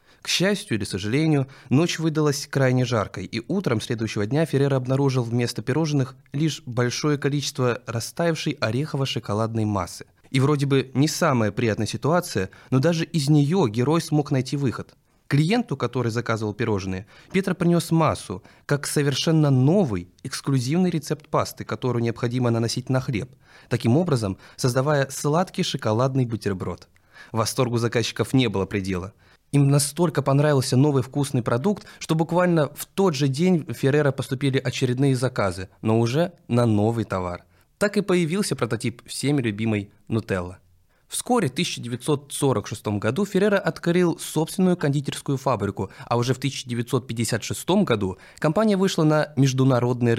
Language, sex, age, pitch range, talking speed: Russian, male, 20-39, 115-150 Hz, 135 wpm